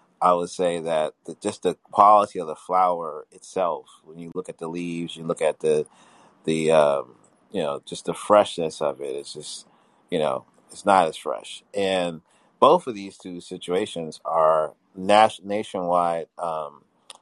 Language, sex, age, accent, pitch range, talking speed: English, male, 30-49, American, 80-95 Hz, 165 wpm